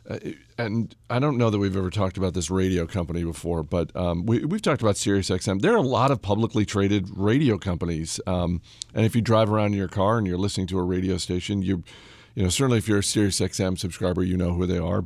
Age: 40-59